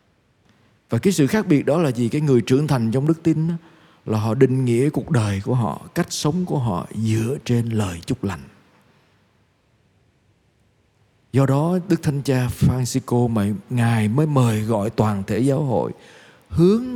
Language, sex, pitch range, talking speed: Vietnamese, male, 110-150 Hz, 170 wpm